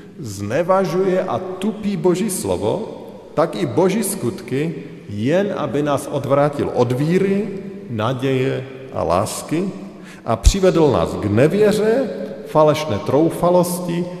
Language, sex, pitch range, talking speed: Slovak, male, 125-175 Hz, 105 wpm